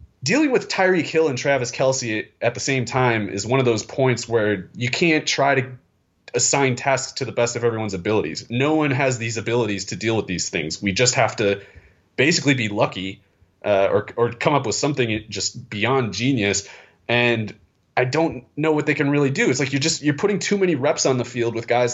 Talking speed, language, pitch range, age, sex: 215 wpm, English, 115-140 Hz, 30-49, male